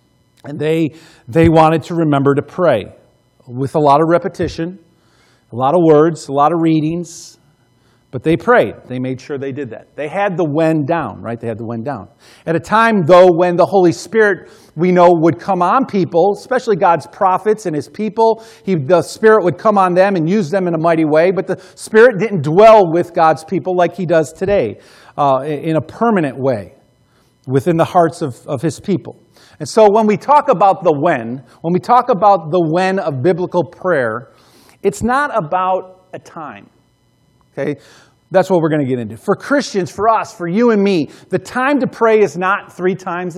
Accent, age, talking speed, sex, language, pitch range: American, 40-59, 200 wpm, male, English, 145-200 Hz